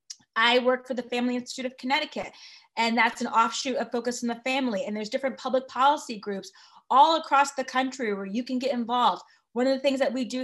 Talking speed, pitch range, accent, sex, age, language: 225 wpm, 225-270 Hz, American, female, 20-39, English